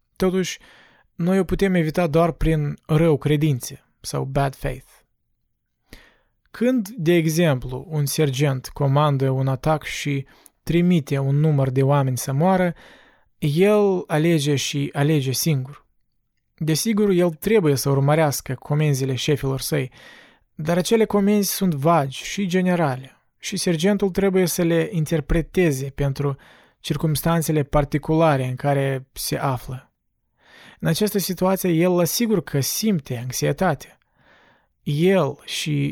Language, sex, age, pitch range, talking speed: Romanian, male, 20-39, 140-175 Hz, 120 wpm